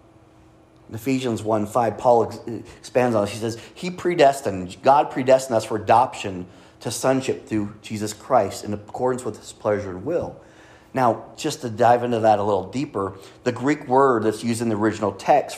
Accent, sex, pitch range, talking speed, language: American, male, 105-120 Hz, 180 wpm, English